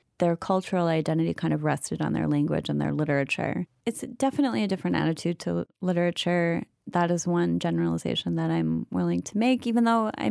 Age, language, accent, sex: 30-49, English, American, female